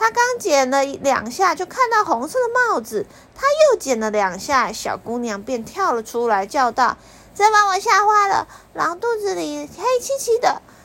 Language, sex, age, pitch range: Chinese, female, 30-49, 195-285 Hz